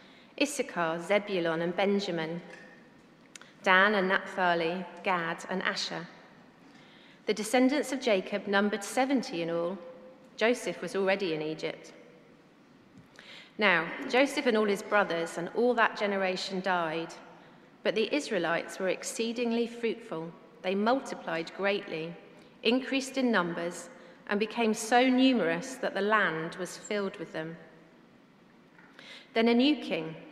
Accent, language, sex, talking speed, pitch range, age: British, English, female, 120 wpm, 175-235 Hz, 30-49